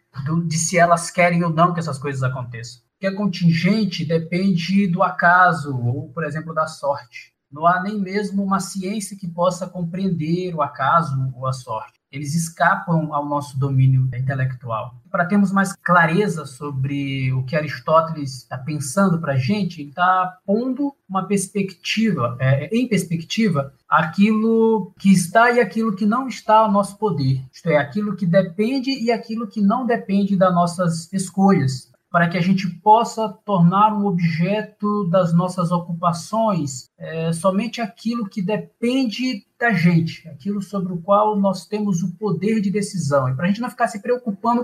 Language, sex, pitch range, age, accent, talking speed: Portuguese, male, 160-205 Hz, 20-39, Brazilian, 165 wpm